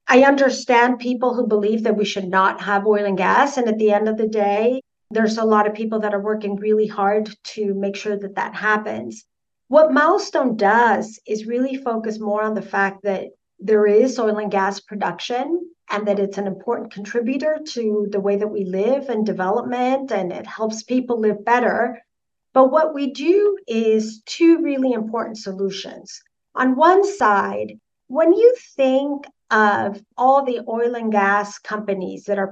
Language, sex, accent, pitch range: English, female, American, 200-255 Hz